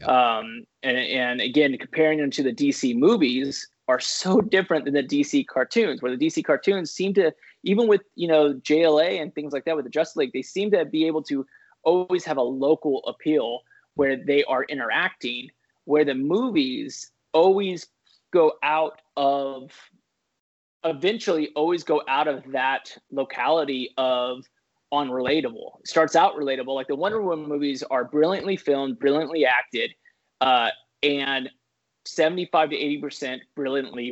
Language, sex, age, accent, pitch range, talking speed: English, male, 20-39, American, 140-185 Hz, 155 wpm